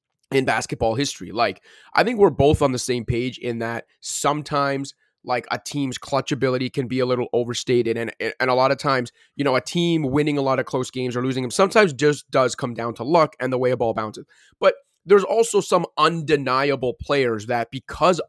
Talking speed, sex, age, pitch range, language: 215 wpm, male, 20-39, 125-150 Hz, English